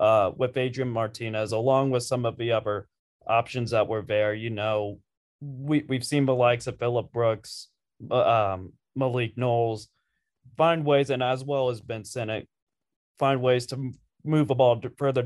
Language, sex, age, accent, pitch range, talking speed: English, male, 20-39, American, 120-140 Hz, 170 wpm